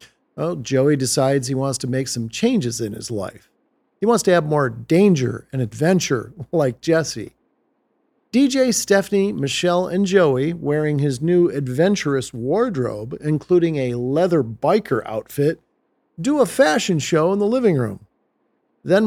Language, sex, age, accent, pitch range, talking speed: English, male, 50-69, American, 135-190 Hz, 145 wpm